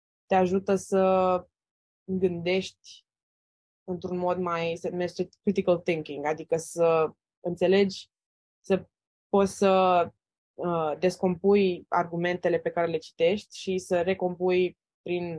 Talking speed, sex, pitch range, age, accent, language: 110 wpm, female, 160-190 Hz, 20-39, native, Romanian